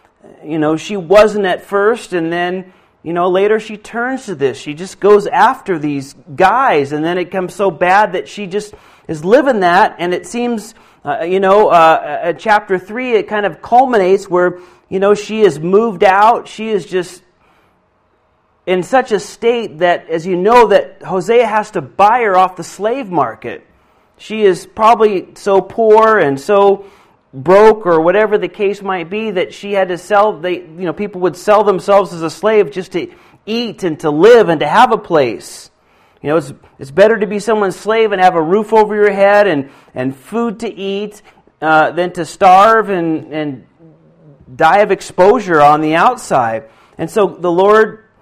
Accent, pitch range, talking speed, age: American, 175-215 Hz, 190 wpm, 40-59